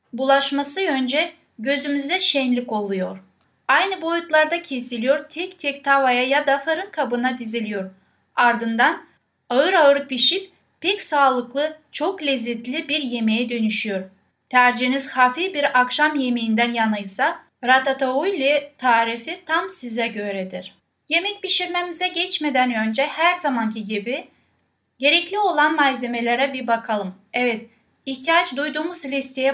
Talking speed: 110 wpm